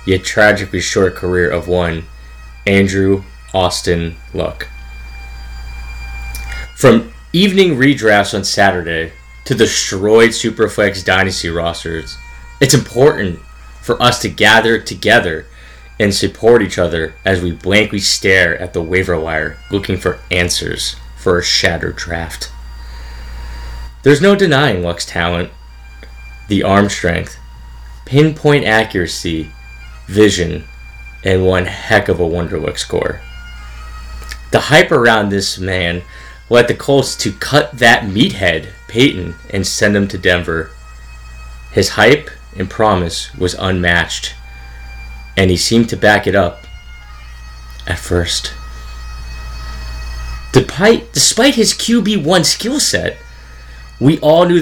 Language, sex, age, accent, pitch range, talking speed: English, male, 20-39, American, 65-105 Hz, 115 wpm